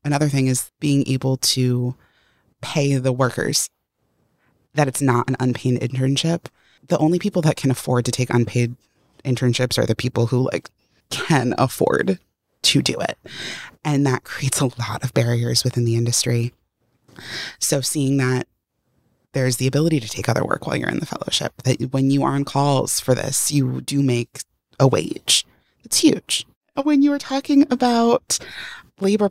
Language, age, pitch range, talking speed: English, 20-39, 125-155 Hz, 165 wpm